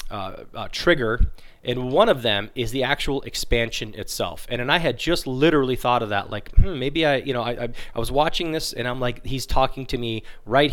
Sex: male